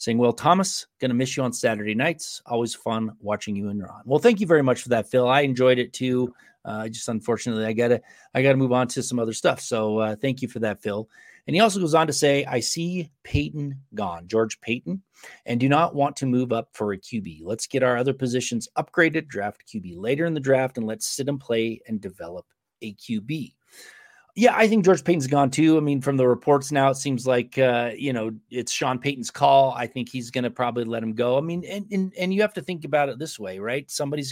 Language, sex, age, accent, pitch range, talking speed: English, male, 30-49, American, 120-155 Hz, 245 wpm